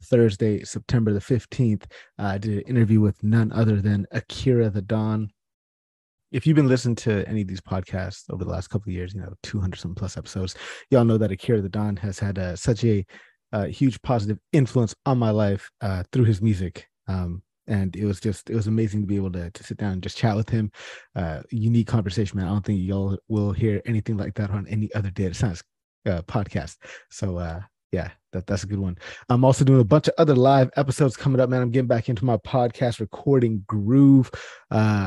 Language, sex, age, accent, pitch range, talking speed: English, male, 30-49, American, 95-115 Hz, 215 wpm